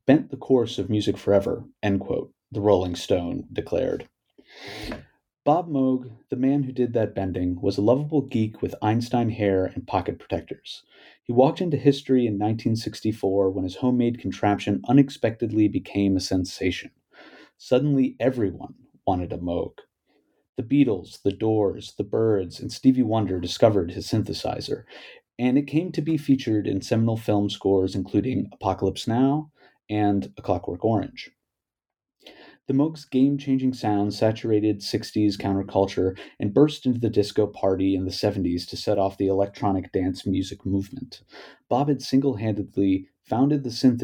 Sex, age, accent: male, 30-49, American